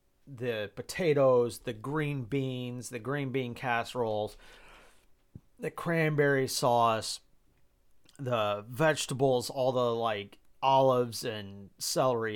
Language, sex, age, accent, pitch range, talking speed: English, male, 30-49, American, 105-125 Hz, 95 wpm